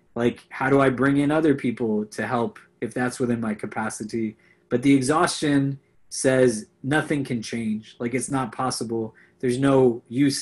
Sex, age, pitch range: male, 20-39, 120-135 Hz